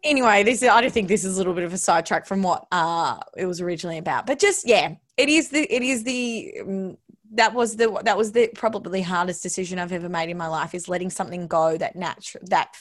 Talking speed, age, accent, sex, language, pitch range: 250 wpm, 20-39, Australian, female, English, 190-285 Hz